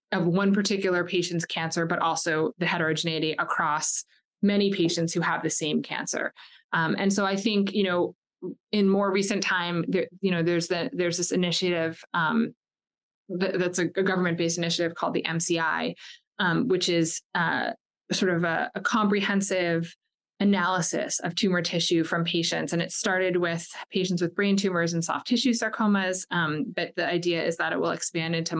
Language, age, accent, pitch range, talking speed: English, 20-39, American, 165-190 Hz, 170 wpm